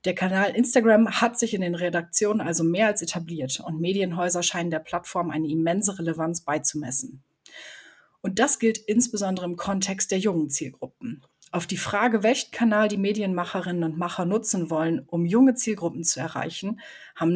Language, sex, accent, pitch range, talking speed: German, female, German, 165-210 Hz, 165 wpm